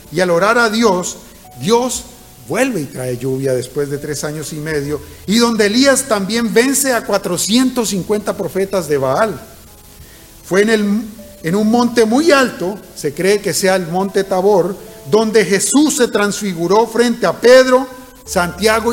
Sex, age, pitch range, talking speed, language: male, 50-69, 145-215 Hz, 150 wpm, Spanish